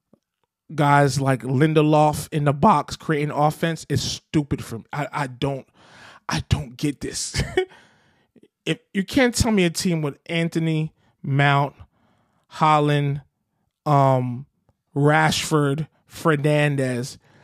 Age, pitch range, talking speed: 20-39, 135-160 Hz, 115 wpm